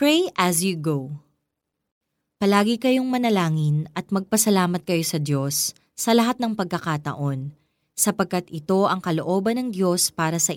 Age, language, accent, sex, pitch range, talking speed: 20-39, Filipino, native, female, 160-225 Hz, 135 wpm